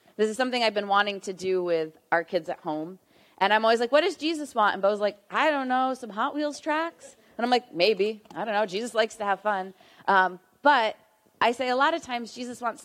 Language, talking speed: English, 245 wpm